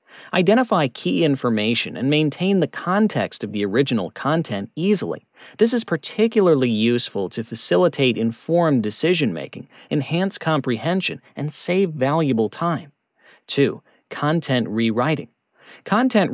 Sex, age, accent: male, 40-59, American